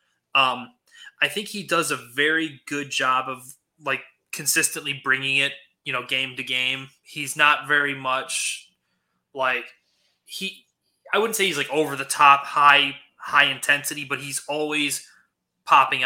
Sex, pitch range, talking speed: male, 135-150 Hz, 145 wpm